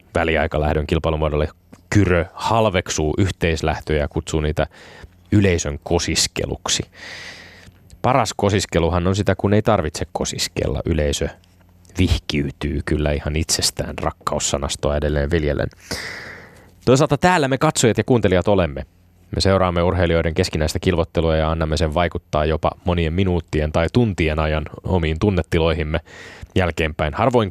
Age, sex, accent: 20-39, male, native